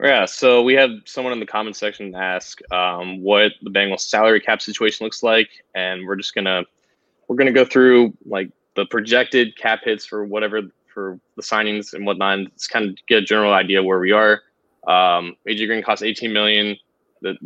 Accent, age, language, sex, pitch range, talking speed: American, 20-39, English, male, 100-115 Hz, 195 wpm